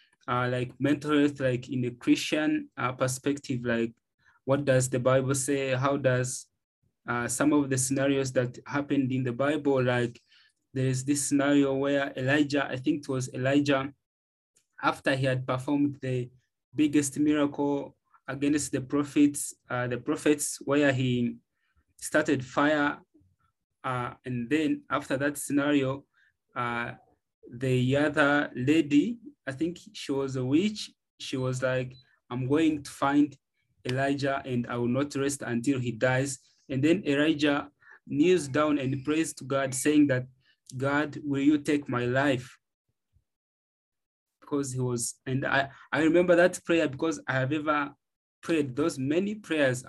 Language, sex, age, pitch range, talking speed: English, male, 20-39, 130-145 Hz, 145 wpm